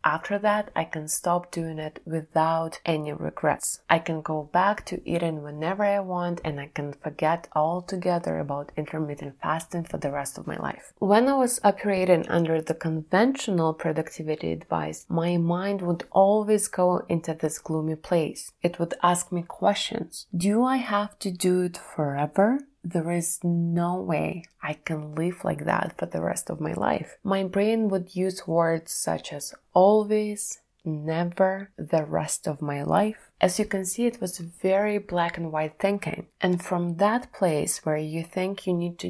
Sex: female